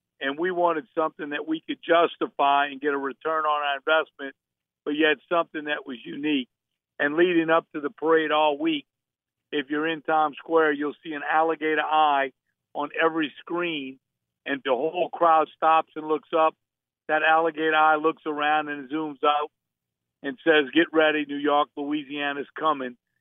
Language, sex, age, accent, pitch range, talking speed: English, male, 50-69, American, 145-165 Hz, 175 wpm